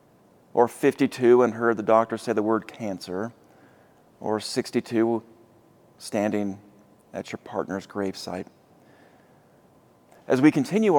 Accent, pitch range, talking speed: American, 110-130 Hz, 110 wpm